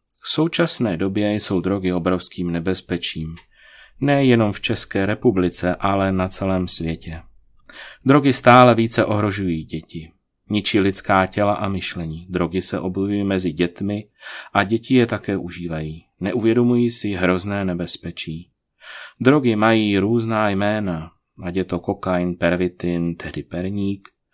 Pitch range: 90-110 Hz